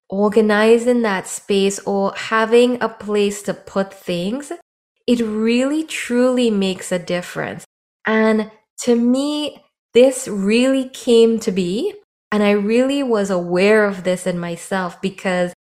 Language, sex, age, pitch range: English, female, 20-39, 180-220 Hz